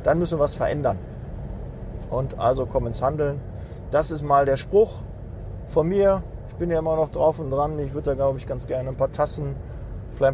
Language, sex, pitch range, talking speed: German, male, 125-150 Hz, 210 wpm